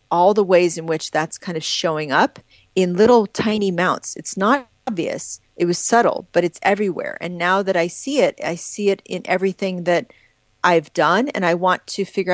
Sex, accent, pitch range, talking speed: female, American, 170-200 Hz, 205 wpm